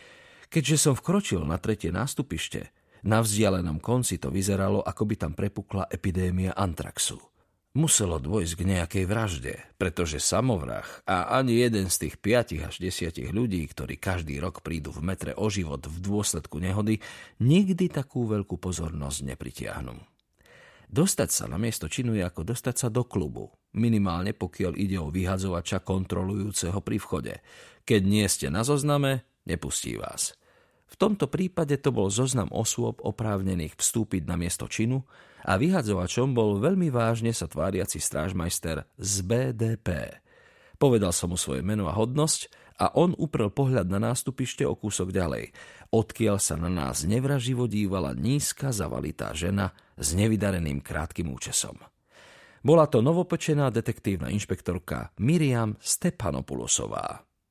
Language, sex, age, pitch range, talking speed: Slovak, male, 40-59, 90-120 Hz, 140 wpm